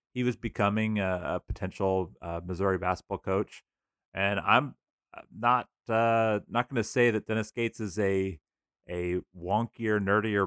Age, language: 30-49, English